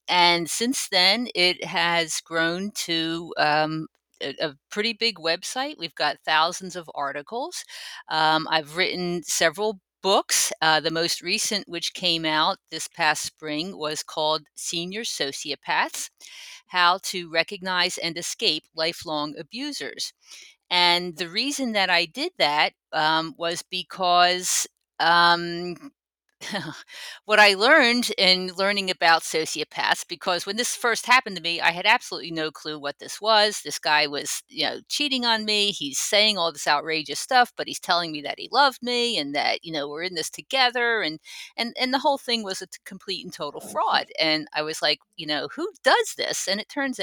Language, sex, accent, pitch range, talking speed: English, female, American, 160-215 Hz, 165 wpm